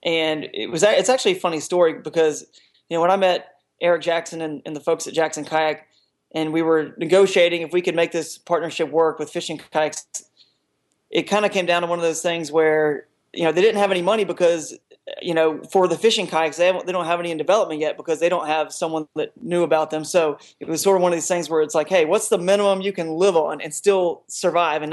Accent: American